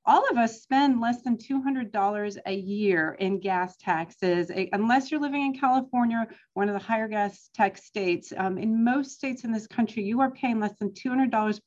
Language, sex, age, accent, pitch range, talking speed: English, female, 40-59, American, 185-245 Hz, 190 wpm